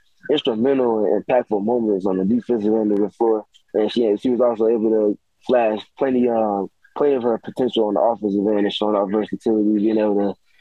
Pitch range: 110-125 Hz